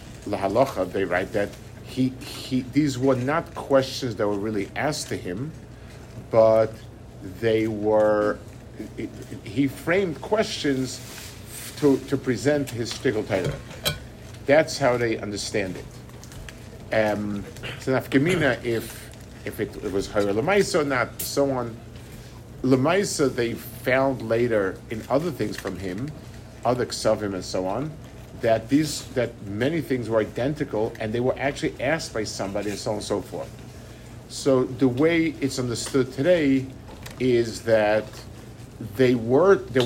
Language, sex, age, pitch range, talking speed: English, male, 50-69, 110-135 Hz, 135 wpm